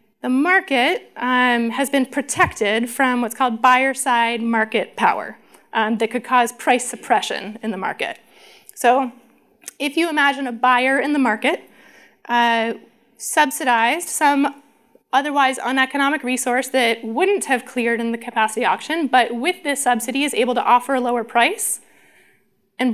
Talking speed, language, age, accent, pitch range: 145 wpm, English, 20-39, American, 235-275 Hz